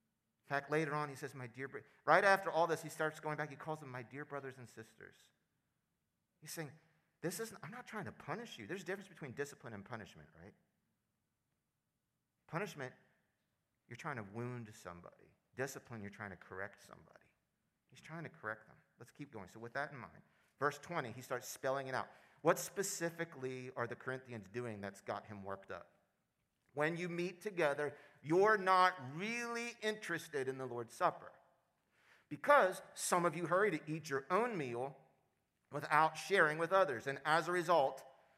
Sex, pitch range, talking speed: male, 130-180 Hz, 180 wpm